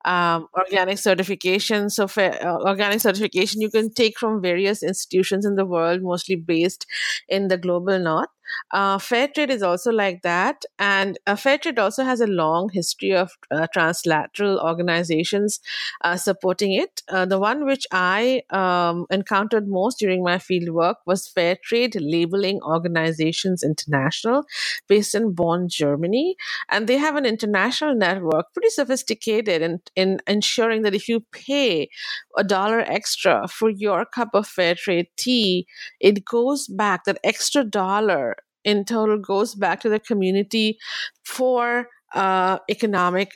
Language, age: English, 50-69